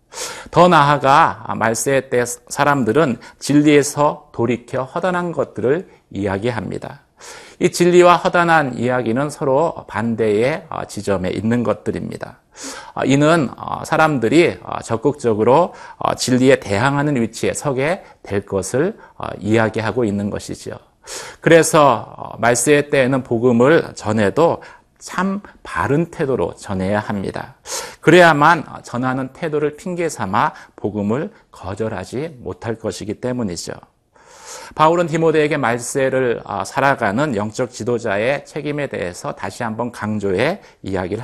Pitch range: 110-150 Hz